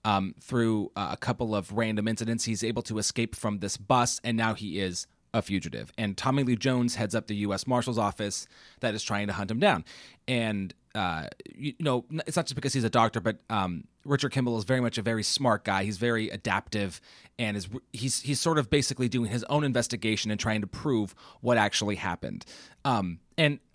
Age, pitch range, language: 30-49, 105-145 Hz, English